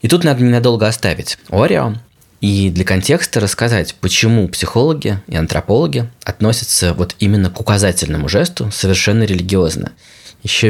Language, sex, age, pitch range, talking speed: Russian, male, 20-39, 95-125 Hz, 130 wpm